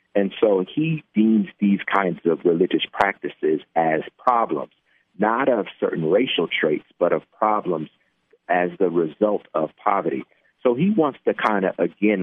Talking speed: 150 wpm